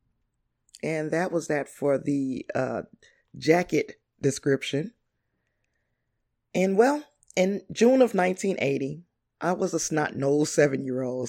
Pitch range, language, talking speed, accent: 145-175 Hz, English, 105 wpm, American